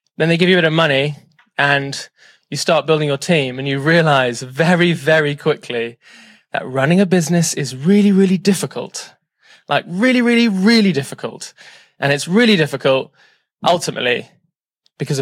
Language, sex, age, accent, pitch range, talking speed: English, male, 20-39, British, 140-180 Hz, 145 wpm